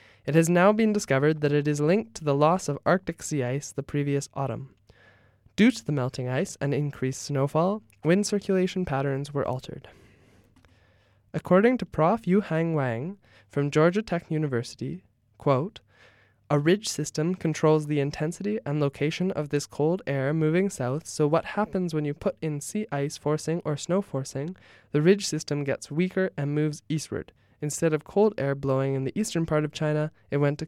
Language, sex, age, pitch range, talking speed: English, male, 20-39, 135-170 Hz, 180 wpm